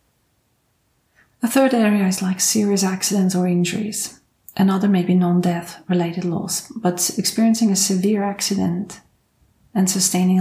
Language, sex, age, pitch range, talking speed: English, female, 40-59, 180-195 Hz, 135 wpm